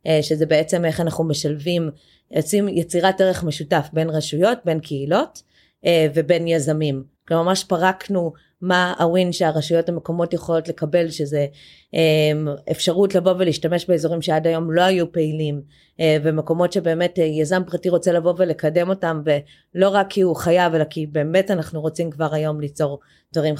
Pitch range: 155-180 Hz